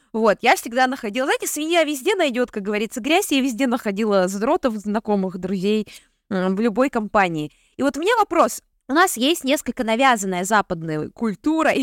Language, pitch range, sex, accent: Russian, 200-280 Hz, female, native